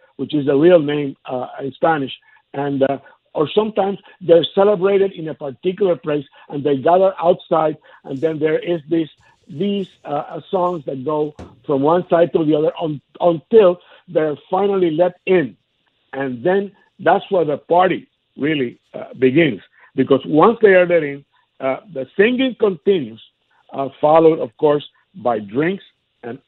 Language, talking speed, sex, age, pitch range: English, 160 wpm, male, 60-79, 140-190 Hz